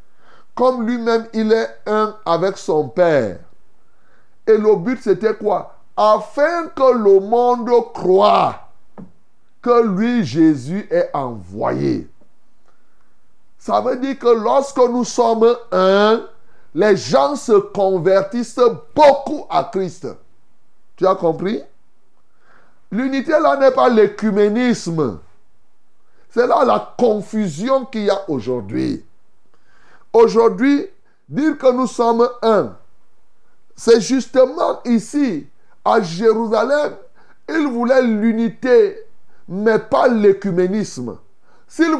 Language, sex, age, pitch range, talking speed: French, male, 60-79, 200-260 Hz, 105 wpm